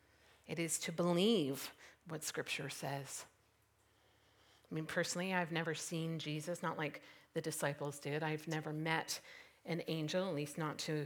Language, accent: English, American